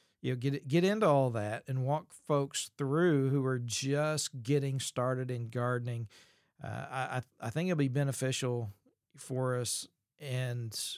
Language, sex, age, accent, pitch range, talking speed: English, male, 40-59, American, 125-155 Hz, 155 wpm